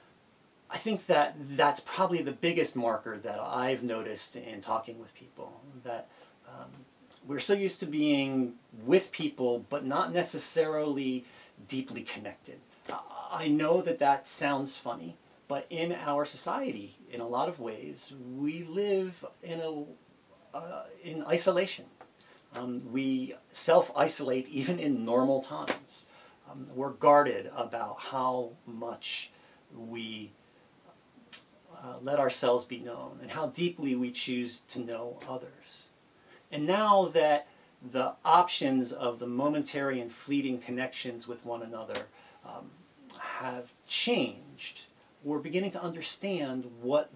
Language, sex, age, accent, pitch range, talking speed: English, male, 40-59, American, 125-160 Hz, 125 wpm